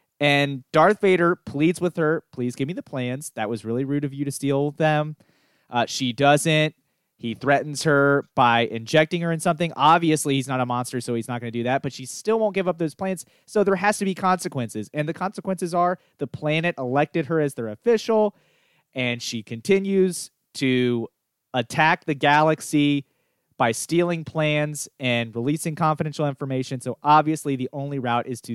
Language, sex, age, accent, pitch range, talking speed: English, male, 30-49, American, 120-155 Hz, 185 wpm